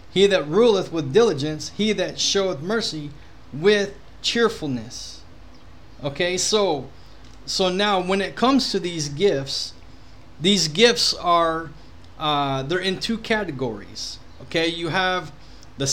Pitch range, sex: 135-185 Hz, male